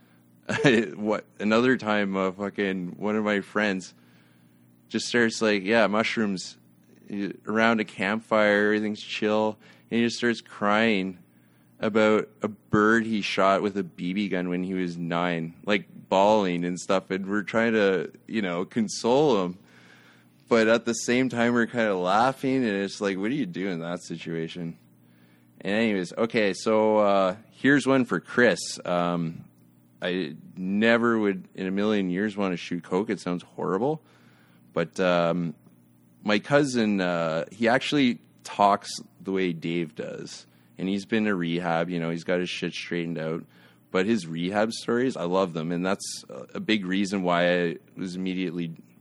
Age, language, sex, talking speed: 20-39, English, male, 165 wpm